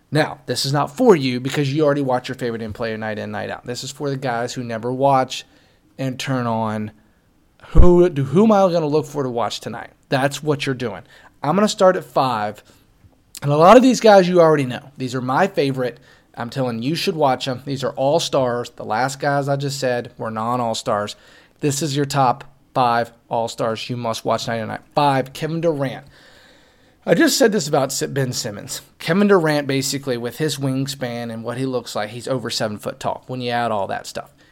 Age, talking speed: 30-49, 215 wpm